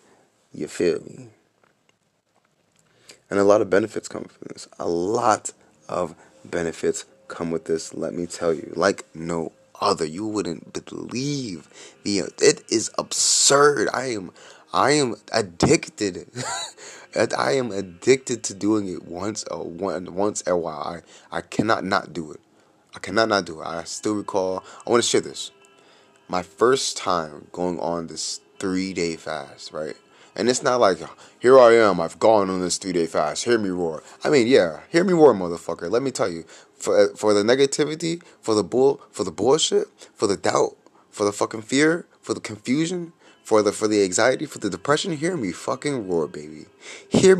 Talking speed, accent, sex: 175 wpm, American, male